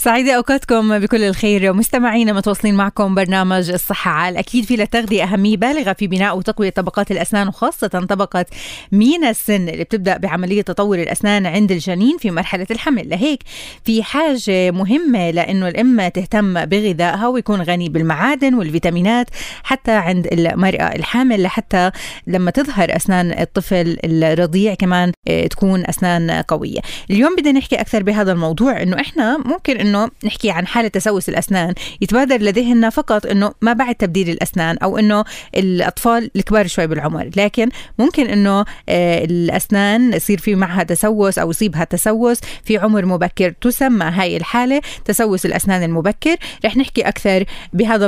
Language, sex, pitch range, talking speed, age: Arabic, female, 180-230 Hz, 140 wpm, 20-39